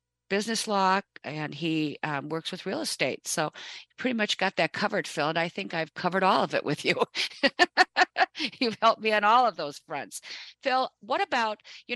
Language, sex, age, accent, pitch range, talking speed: English, female, 50-69, American, 160-205 Hz, 195 wpm